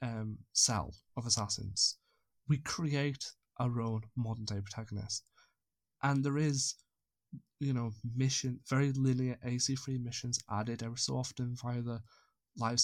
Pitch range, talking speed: 115-135 Hz, 130 wpm